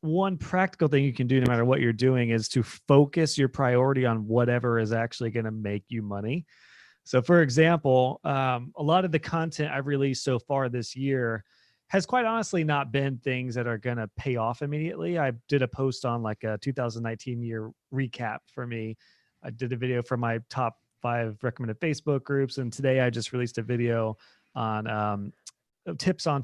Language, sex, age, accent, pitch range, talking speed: English, male, 30-49, American, 115-145 Hz, 195 wpm